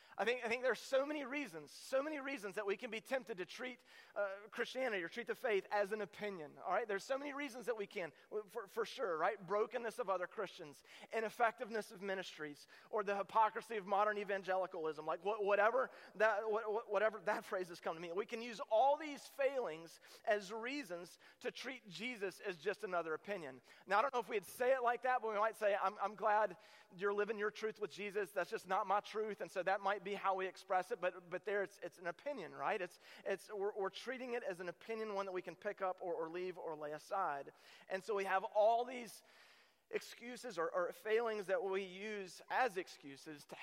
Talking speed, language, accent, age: 225 wpm, English, American, 30-49